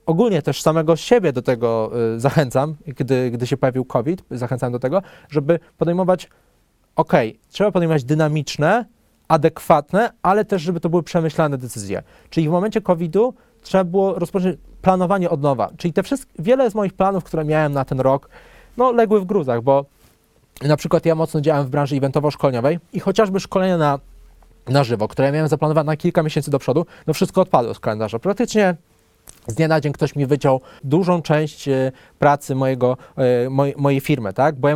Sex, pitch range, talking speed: male, 140-185 Hz, 175 wpm